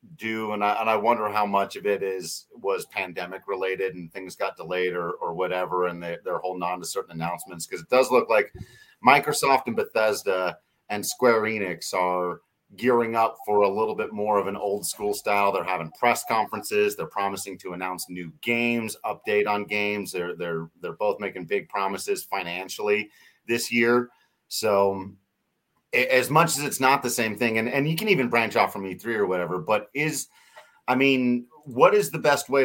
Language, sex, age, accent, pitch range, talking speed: English, male, 30-49, American, 90-120 Hz, 190 wpm